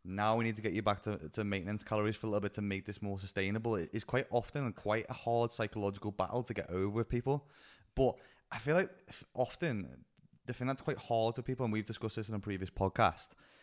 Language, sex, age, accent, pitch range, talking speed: English, male, 20-39, British, 100-120 Hz, 235 wpm